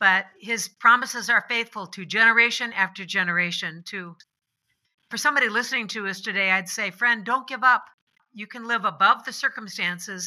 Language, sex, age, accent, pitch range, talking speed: English, female, 60-79, American, 190-235 Hz, 165 wpm